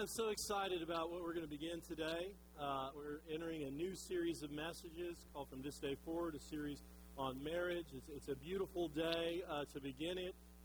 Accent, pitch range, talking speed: American, 135-175 Hz, 205 wpm